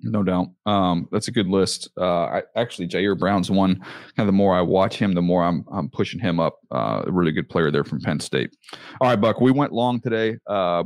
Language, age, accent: English, 30-49, American